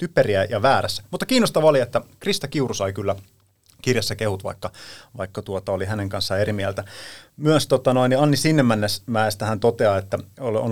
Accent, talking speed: native, 170 wpm